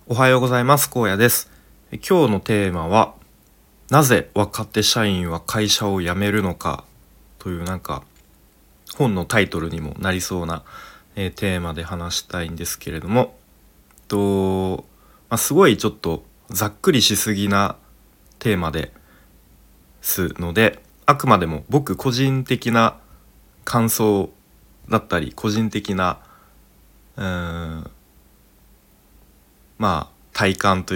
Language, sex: Japanese, male